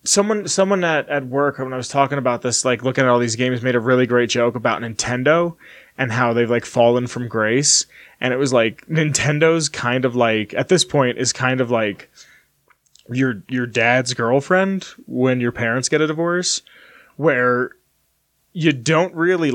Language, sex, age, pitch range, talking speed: English, male, 20-39, 125-160 Hz, 185 wpm